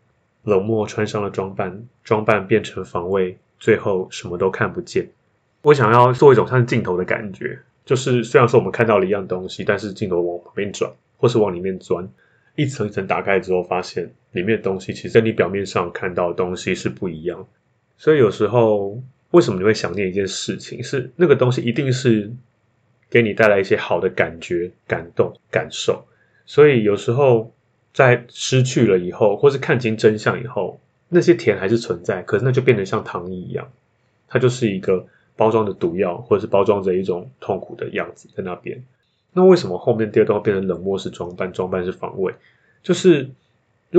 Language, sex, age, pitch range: Chinese, male, 20-39, 100-125 Hz